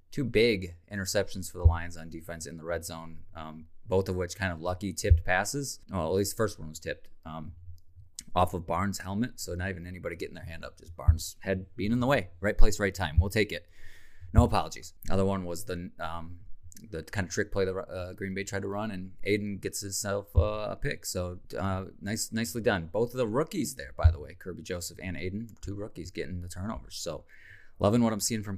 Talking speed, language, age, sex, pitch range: 230 wpm, English, 20-39, male, 85-110 Hz